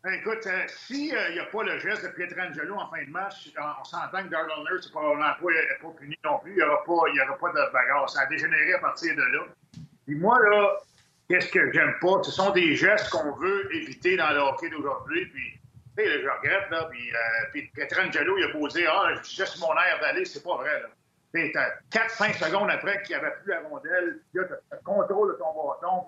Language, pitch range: French, 180-255 Hz